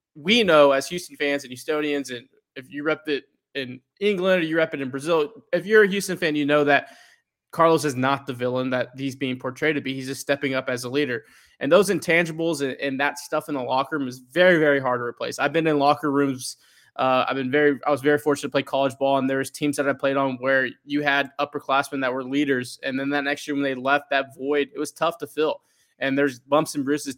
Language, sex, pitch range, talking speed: English, male, 135-155 Hz, 245 wpm